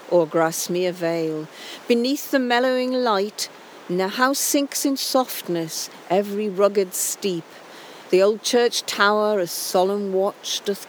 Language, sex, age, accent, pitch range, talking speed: English, female, 50-69, British, 190-260 Hz, 130 wpm